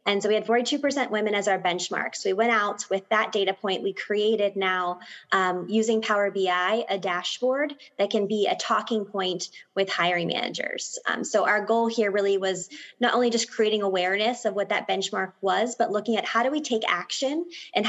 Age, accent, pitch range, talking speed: 20-39, American, 190-220 Hz, 205 wpm